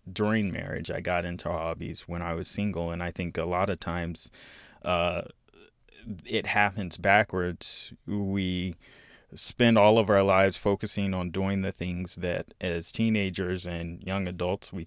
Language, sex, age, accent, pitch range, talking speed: English, male, 20-39, American, 90-110 Hz, 155 wpm